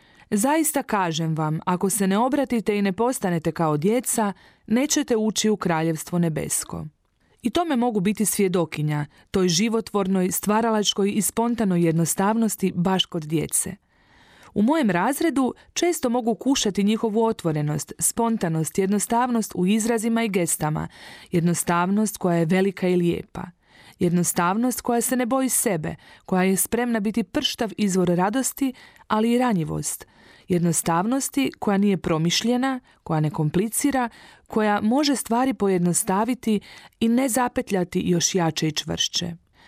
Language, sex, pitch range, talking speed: Croatian, female, 175-235 Hz, 130 wpm